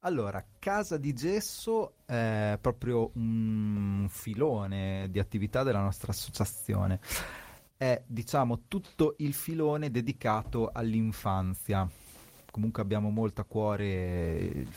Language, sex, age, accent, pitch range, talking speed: Italian, male, 30-49, native, 95-115 Hz, 105 wpm